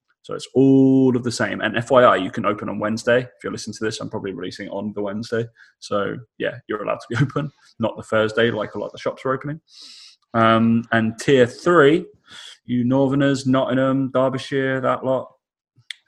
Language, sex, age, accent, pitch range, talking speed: English, male, 20-39, British, 110-130 Hz, 200 wpm